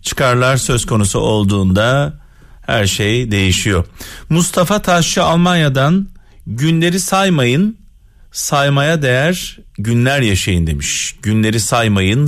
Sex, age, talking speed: male, 40-59, 95 wpm